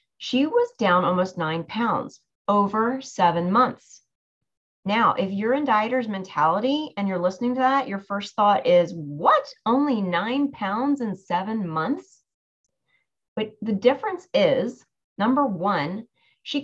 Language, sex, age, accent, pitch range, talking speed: English, female, 30-49, American, 195-265 Hz, 135 wpm